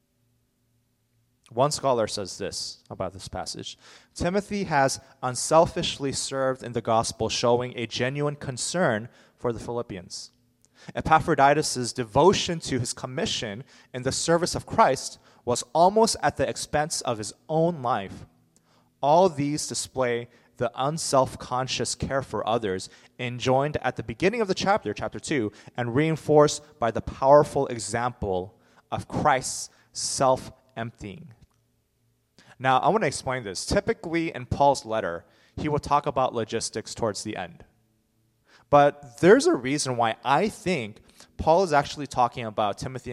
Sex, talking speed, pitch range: male, 135 wpm, 115-145 Hz